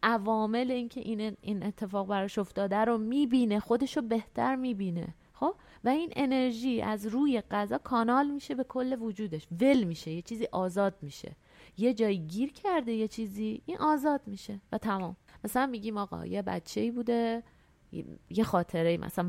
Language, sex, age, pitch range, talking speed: Persian, female, 30-49, 200-240 Hz, 150 wpm